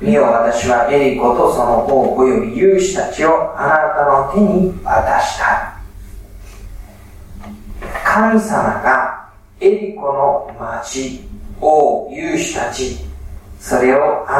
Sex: male